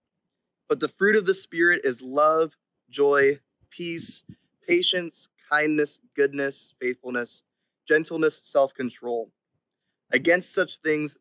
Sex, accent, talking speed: male, American, 100 wpm